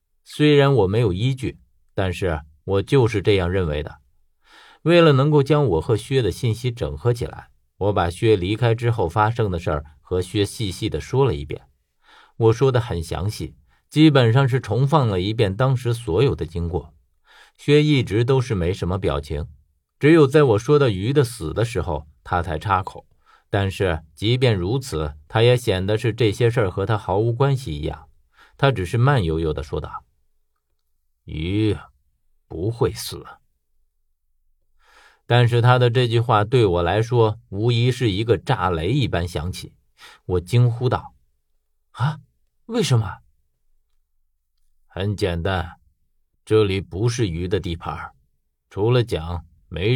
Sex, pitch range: male, 80-120 Hz